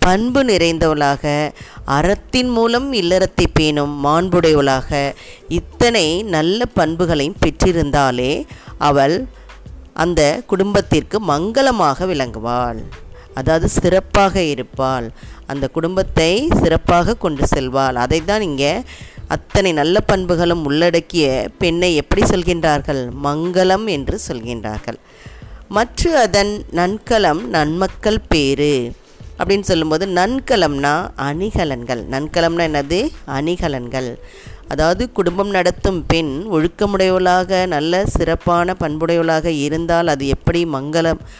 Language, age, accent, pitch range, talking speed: Tamil, 20-39, native, 140-185 Hz, 90 wpm